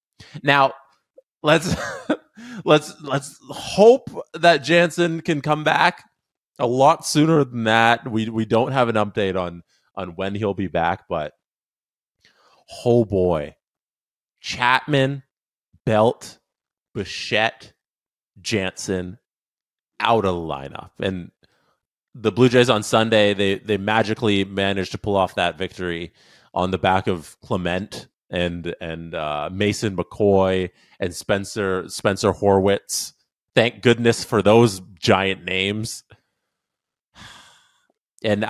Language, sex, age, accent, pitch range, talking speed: English, male, 30-49, American, 95-130 Hz, 115 wpm